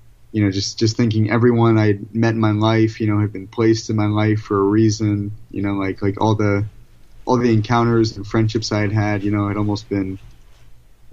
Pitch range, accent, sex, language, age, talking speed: 95-110 Hz, American, male, English, 20-39, 225 wpm